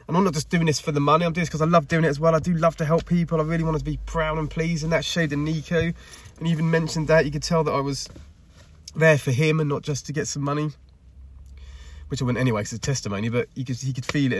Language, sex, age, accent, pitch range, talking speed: English, male, 20-39, British, 115-155 Hz, 310 wpm